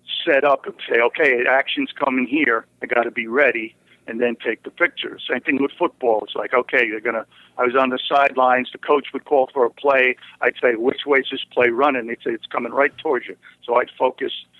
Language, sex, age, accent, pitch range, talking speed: English, male, 50-69, American, 115-140 Hz, 245 wpm